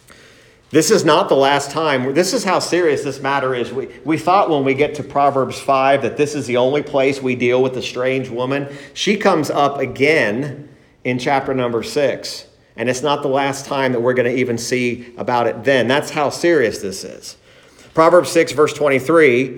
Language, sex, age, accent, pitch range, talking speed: English, male, 40-59, American, 130-190 Hz, 200 wpm